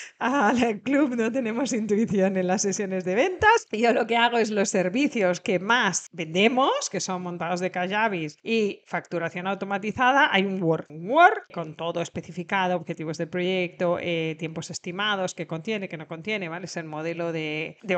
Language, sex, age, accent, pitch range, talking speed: Spanish, female, 40-59, Spanish, 180-235 Hz, 175 wpm